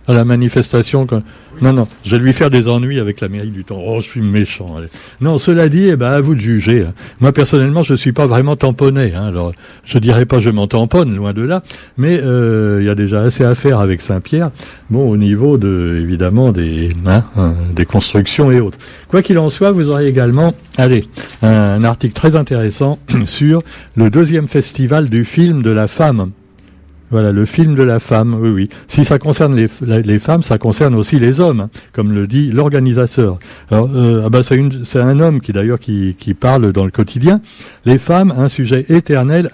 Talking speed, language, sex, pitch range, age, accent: 210 wpm, French, male, 105-140 Hz, 60-79, French